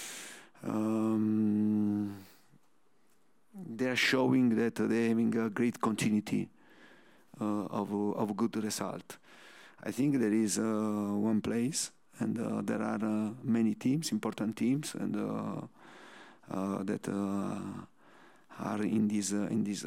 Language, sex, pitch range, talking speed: English, male, 105-125 Hz, 135 wpm